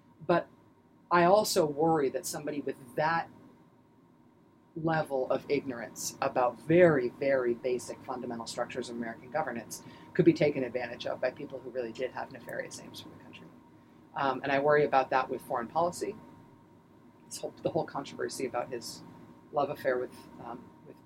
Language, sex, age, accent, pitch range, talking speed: English, female, 40-59, American, 120-155 Hz, 160 wpm